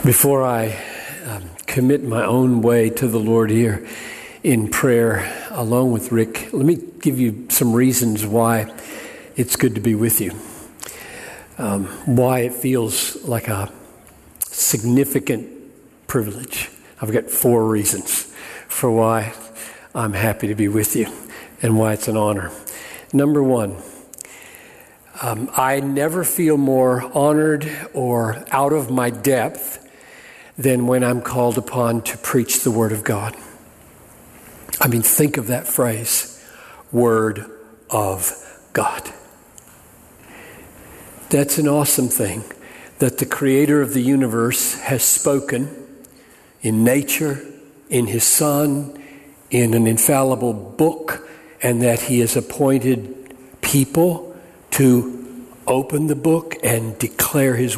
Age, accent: 50-69, American